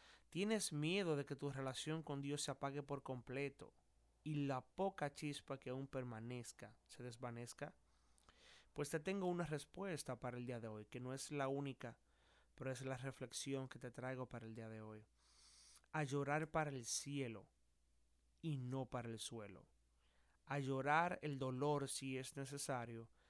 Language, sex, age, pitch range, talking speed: Spanish, male, 30-49, 120-145 Hz, 165 wpm